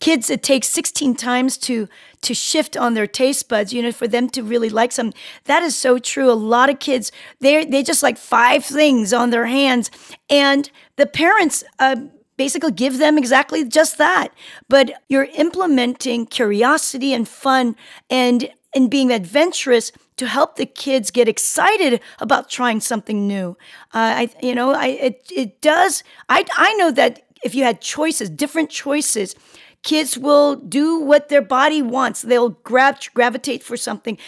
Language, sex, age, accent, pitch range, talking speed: English, female, 40-59, American, 235-285 Hz, 170 wpm